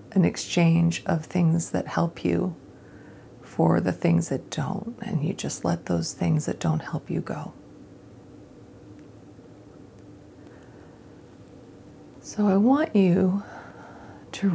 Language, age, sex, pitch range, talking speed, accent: English, 40-59, female, 135-195 Hz, 115 wpm, American